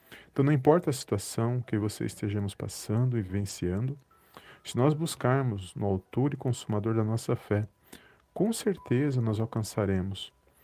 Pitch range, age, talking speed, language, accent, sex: 105-125 Hz, 40-59, 140 wpm, Portuguese, Brazilian, male